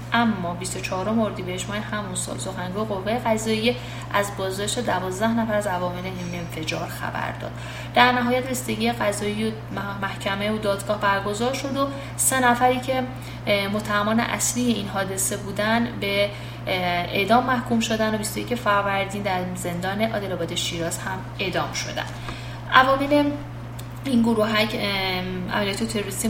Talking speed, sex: 135 wpm, female